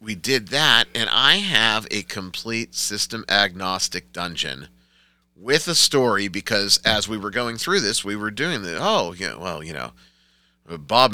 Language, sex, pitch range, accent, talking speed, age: English, male, 95-120 Hz, American, 160 wpm, 30-49